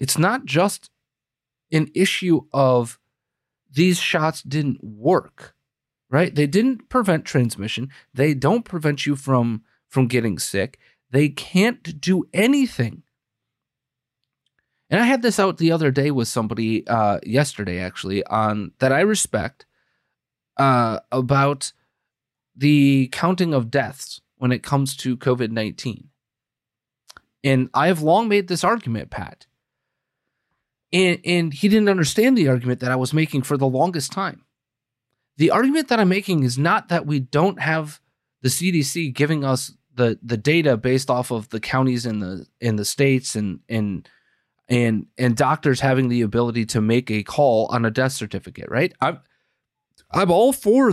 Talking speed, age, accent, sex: 150 wpm, 30-49, American, male